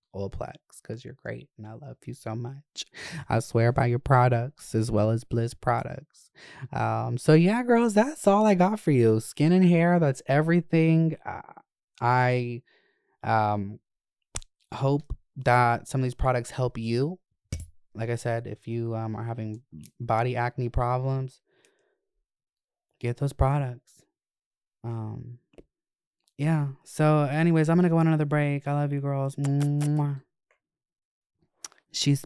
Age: 20-39